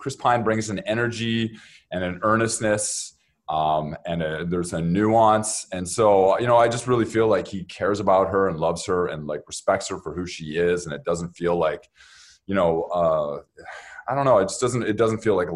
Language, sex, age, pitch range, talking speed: English, male, 20-39, 95-130 Hz, 210 wpm